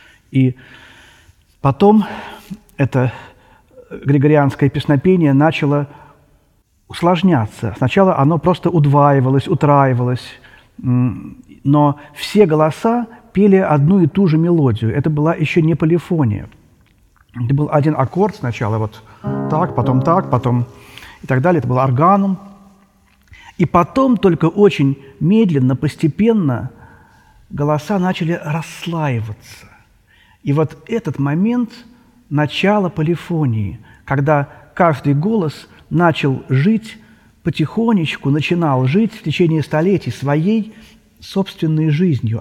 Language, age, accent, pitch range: Russian, 40-59, native, 125-185 Hz